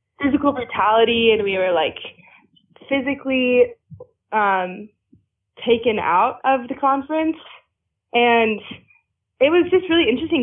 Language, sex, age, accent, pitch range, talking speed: English, female, 20-39, American, 210-275 Hz, 110 wpm